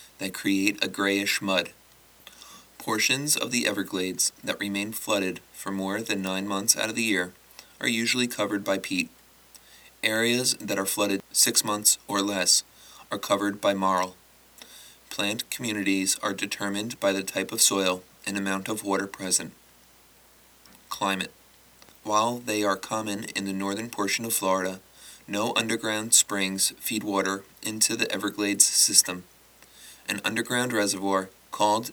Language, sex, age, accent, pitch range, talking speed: English, male, 20-39, American, 95-110 Hz, 145 wpm